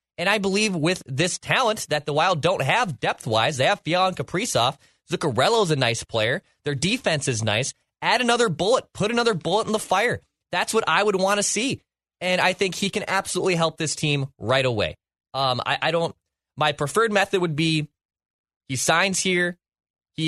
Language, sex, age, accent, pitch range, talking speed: English, male, 20-39, American, 130-180 Hz, 195 wpm